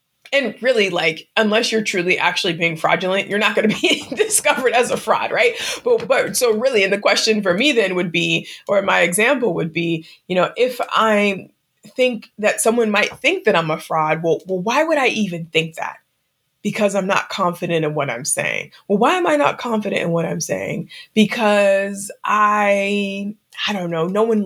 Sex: female